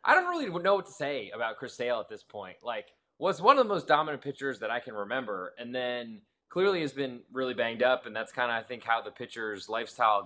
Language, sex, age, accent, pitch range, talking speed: English, male, 20-39, American, 120-170 Hz, 250 wpm